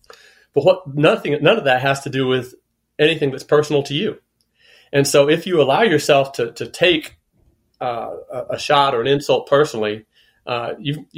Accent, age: American, 40-59